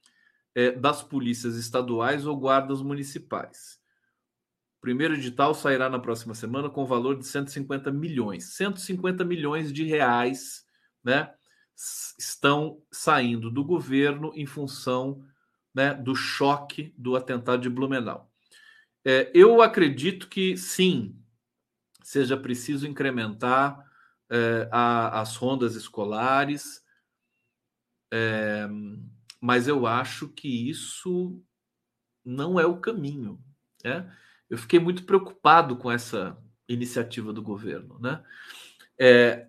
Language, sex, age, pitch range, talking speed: Portuguese, male, 40-59, 120-155 Hz, 105 wpm